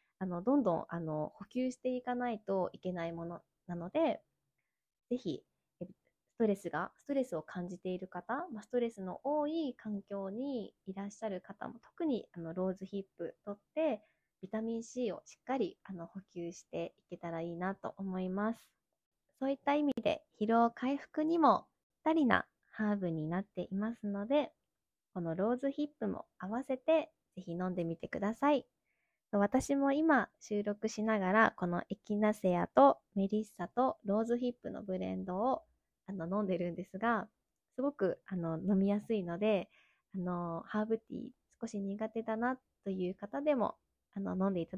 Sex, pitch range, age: female, 185-250 Hz, 20-39